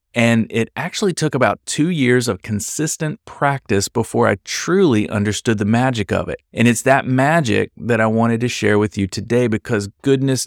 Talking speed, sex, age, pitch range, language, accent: 185 wpm, male, 30-49, 105-130 Hz, English, American